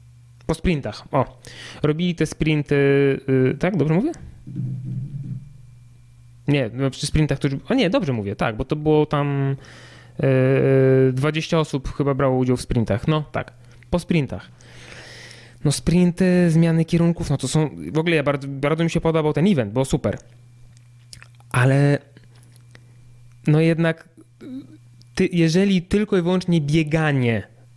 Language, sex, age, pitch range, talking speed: Polish, male, 20-39, 125-155 Hz, 135 wpm